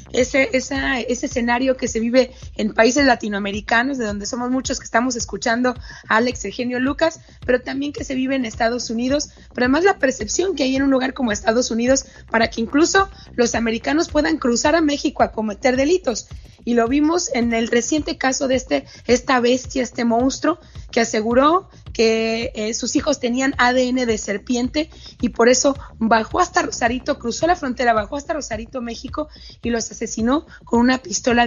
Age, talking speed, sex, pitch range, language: 20-39, 180 wpm, female, 230-280 Hz, Spanish